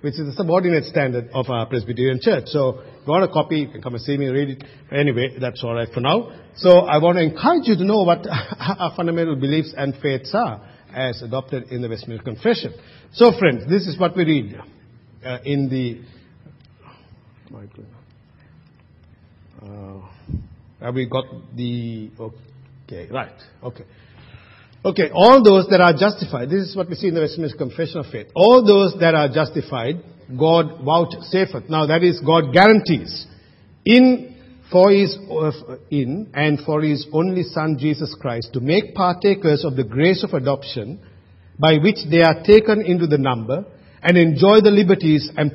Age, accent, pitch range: 50-69, Indian, 125-175 Hz